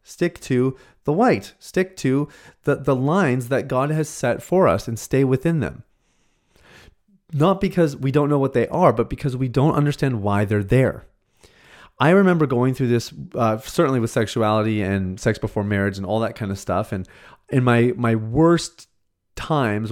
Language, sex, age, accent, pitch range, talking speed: English, male, 30-49, American, 110-140 Hz, 180 wpm